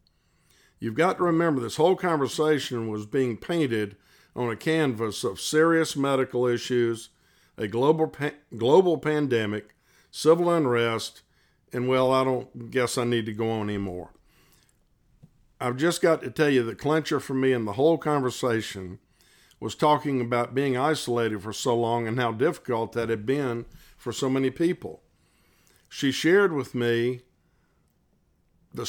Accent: American